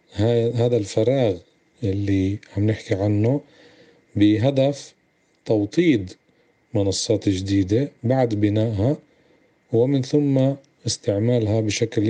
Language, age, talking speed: Arabic, 40-59, 80 wpm